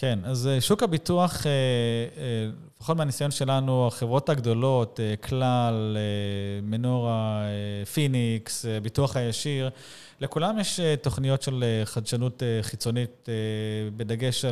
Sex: male